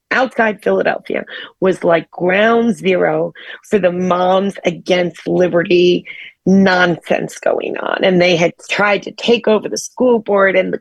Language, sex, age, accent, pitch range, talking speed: English, female, 40-59, American, 190-255 Hz, 145 wpm